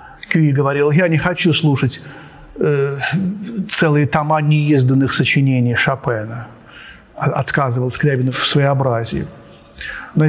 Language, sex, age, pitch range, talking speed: Russian, male, 40-59, 140-170 Hz, 100 wpm